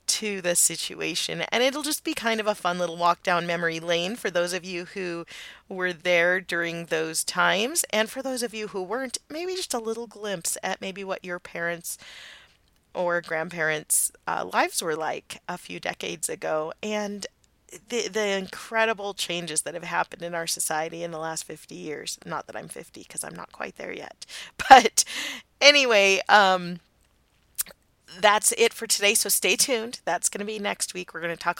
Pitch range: 170-215 Hz